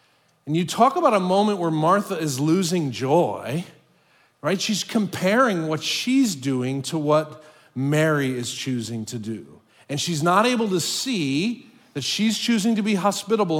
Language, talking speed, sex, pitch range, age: English, 160 wpm, male, 145-210 Hz, 40-59